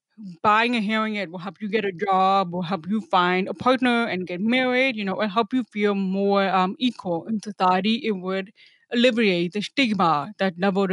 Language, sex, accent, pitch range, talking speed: English, female, Indian, 190-245 Hz, 205 wpm